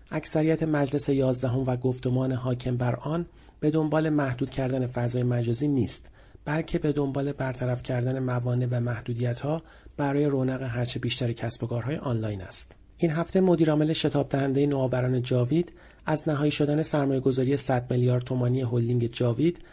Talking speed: 150 wpm